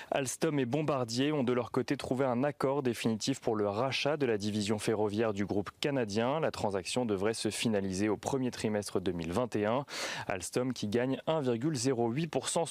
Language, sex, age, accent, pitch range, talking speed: French, male, 30-49, French, 110-135 Hz, 160 wpm